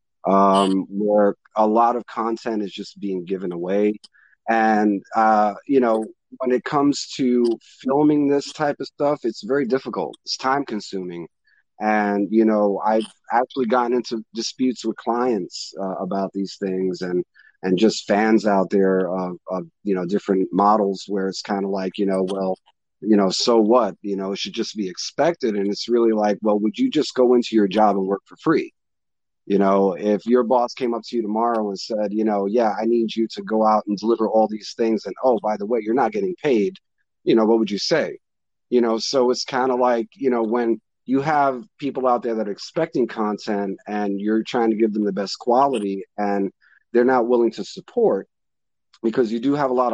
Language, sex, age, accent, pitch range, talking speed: English, male, 30-49, American, 100-120 Hz, 205 wpm